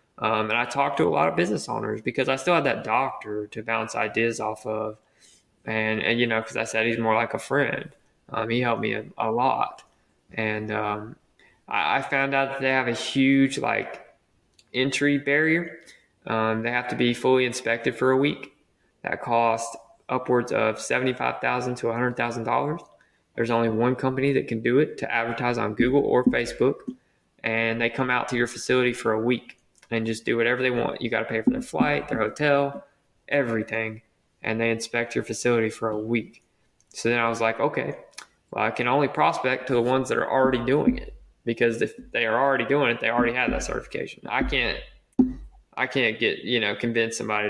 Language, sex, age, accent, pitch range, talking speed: English, male, 20-39, American, 110-135 Hz, 205 wpm